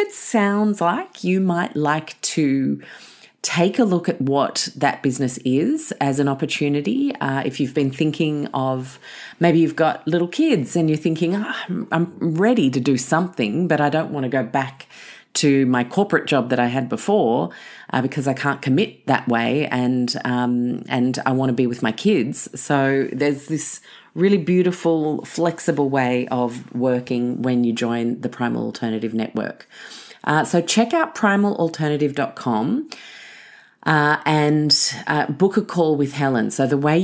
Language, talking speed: English, 160 wpm